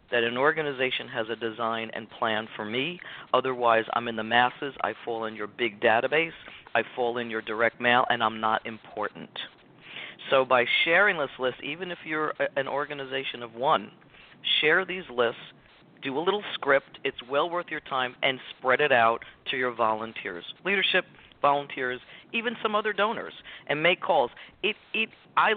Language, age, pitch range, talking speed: English, 50-69, 120-155 Hz, 170 wpm